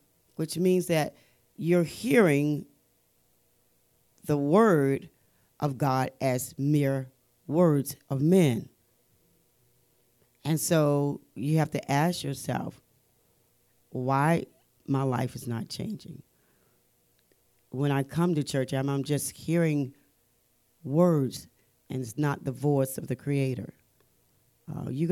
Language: English